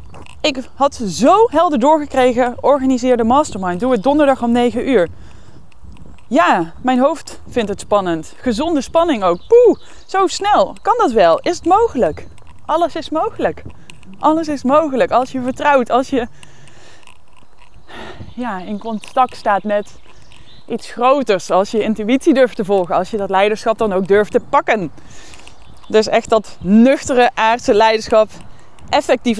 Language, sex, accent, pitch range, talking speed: Dutch, female, Dutch, 200-275 Hz, 145 wpm